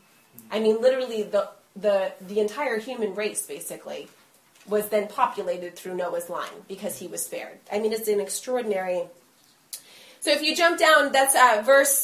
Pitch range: 215-285 Hz